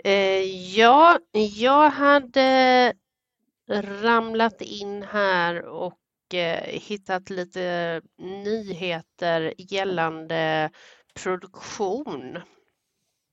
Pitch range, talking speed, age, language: 165-220 Hz, 55 wpm, 30-49, English